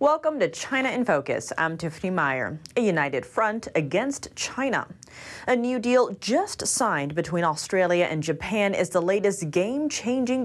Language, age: English, 30-49